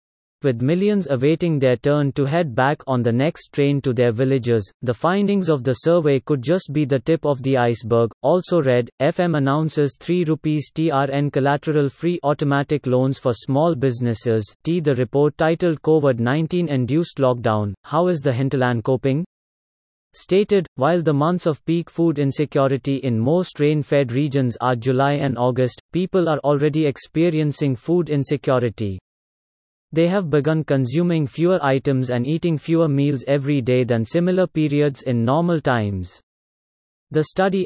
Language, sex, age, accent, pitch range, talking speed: English, male, 30-49, Indian, 130-160 Hz, 150 wpm